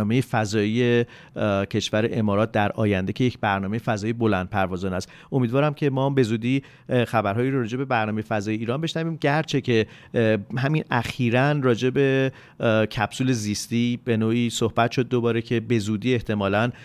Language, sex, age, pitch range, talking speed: Persian, male, 40-59, 110-125 Hz, 145 wpm